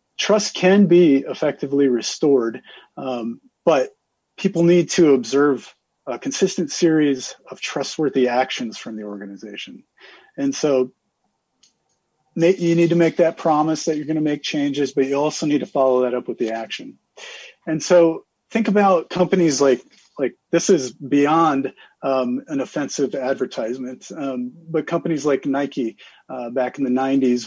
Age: 40-59